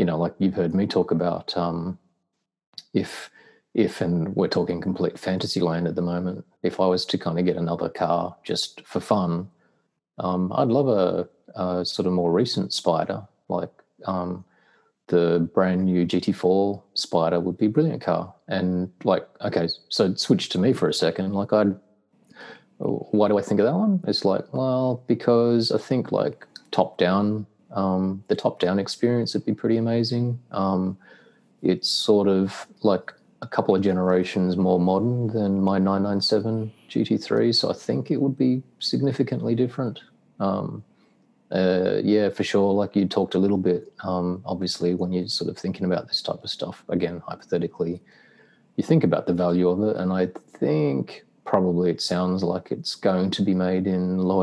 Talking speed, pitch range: 175 wpm, 90-105 Hz